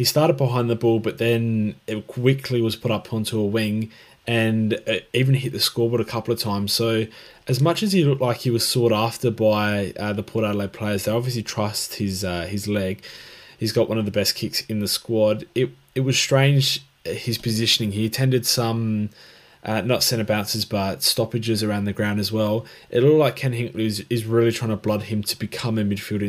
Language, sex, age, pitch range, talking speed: English, male, 20-39, 100-120 Hz, 215 wpm